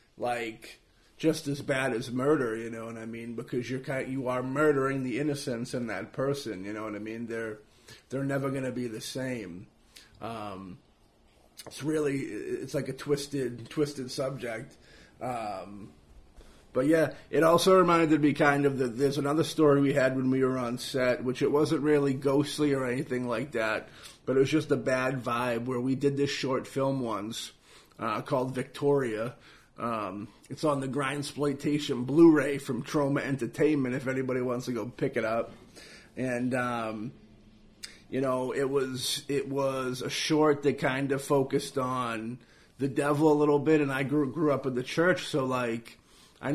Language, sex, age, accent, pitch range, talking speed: English, male, 30-49, American, 125-145 Hz, 180 wpm